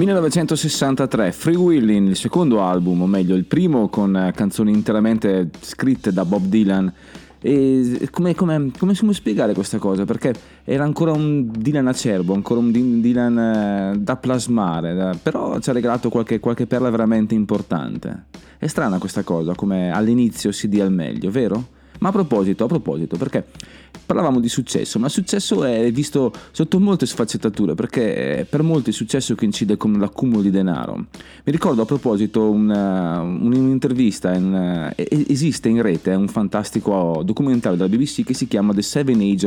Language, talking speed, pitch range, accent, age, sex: Italian, 160 wpm, 95-125 Hz, native, 30-49, male